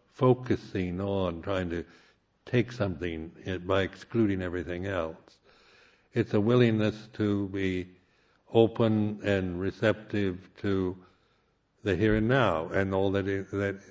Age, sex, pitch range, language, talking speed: 60-79, male, 90-115 Hz, English, 120 wpm